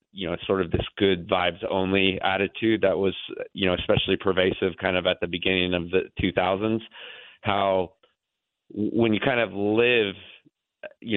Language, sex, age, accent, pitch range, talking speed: English, male, 30-49, American, 90-100 Hz, 165 wpm